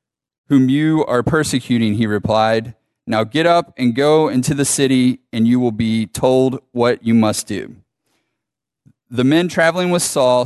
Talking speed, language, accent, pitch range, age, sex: 160 wpm, English, American, 115-140 Hz, 30-49, male